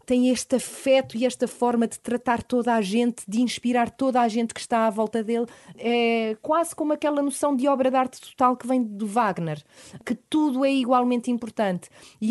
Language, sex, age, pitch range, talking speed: Portuguese, female, 20-39, 215-245 Hz, 200 wpm